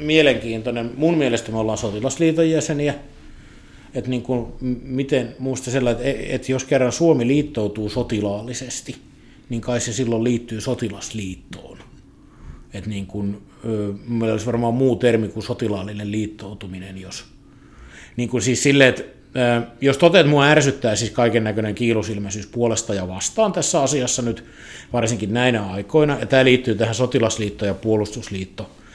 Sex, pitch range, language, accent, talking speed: male, 110-125 Hz, Finnish, native, 120 wpm